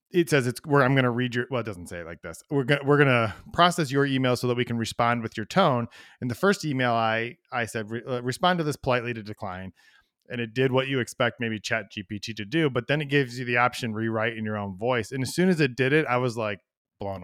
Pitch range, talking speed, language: 110-145 Hz, 280 wpm, English